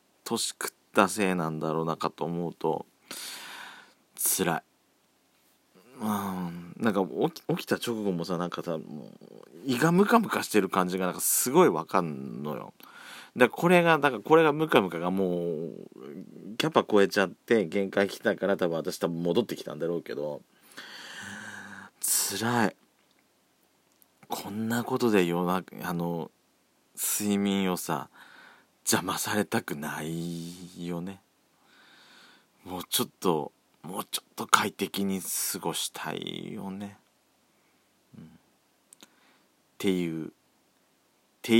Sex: male